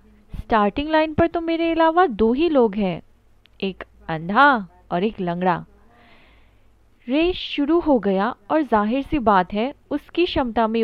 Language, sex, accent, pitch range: Hindi, female, native, 205-300 Hz